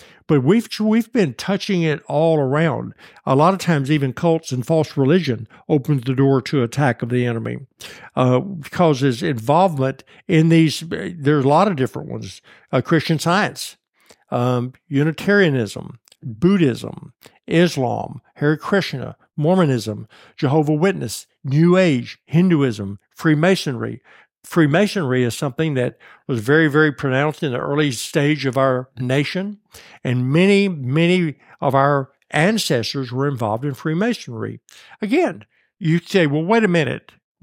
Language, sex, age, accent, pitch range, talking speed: English, male, 60-79, American, 130-170 Hz, 130 wpm